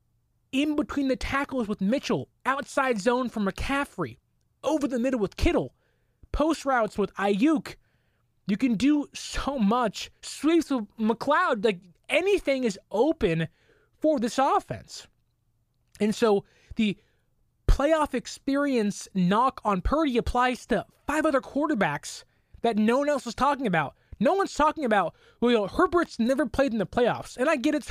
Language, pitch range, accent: English, 215-300 Hz, American